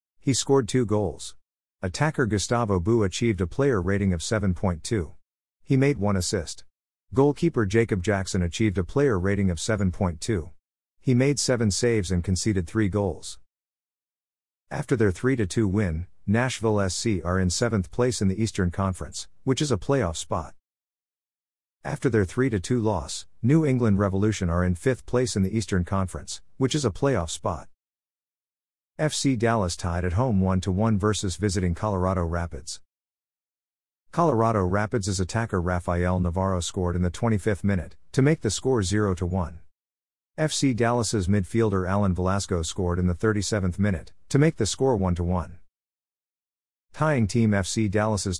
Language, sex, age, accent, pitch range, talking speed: English, male, 50-69, American, 90-115 Hz, 150 wpm